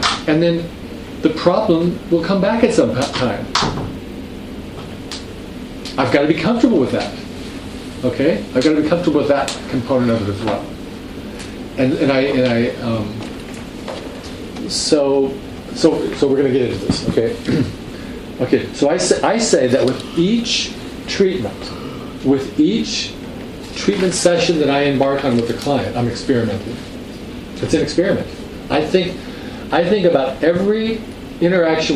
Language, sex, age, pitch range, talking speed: English, male, 40-59, 130-175 Hz, 150 wpm